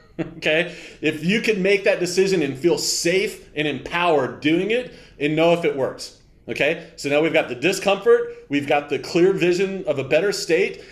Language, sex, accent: English, male, American